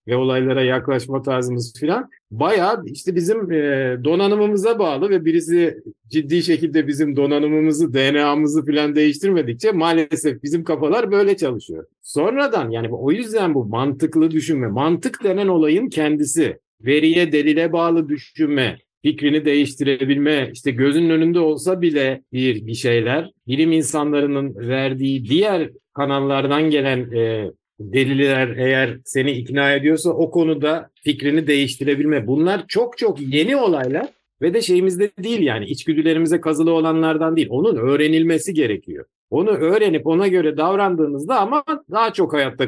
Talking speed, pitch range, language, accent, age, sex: 130 wpm, 135-170 Hz, Turkish, native, 50-69, male